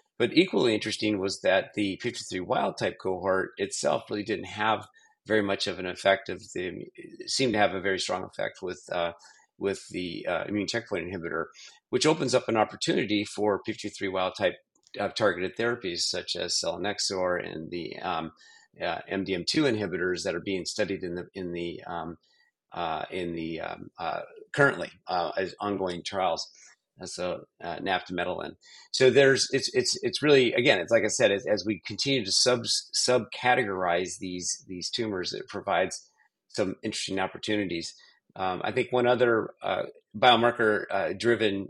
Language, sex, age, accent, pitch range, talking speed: English, male, 40-59, American, 95-120 Hz, 165 wpm